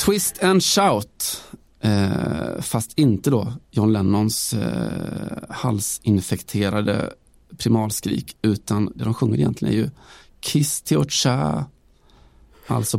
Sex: male